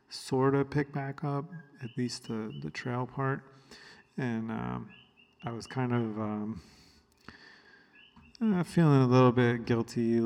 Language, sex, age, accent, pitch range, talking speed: English, male, 40-59, American, 110-125 Hz, 145 wpm